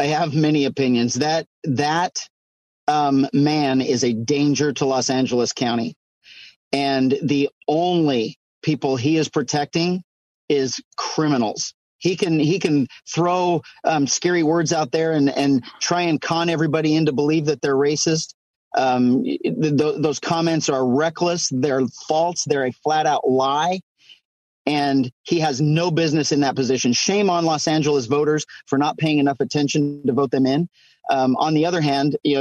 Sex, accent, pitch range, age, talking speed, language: male, American, 135-160 Hz, 40-59, 160 wpm, English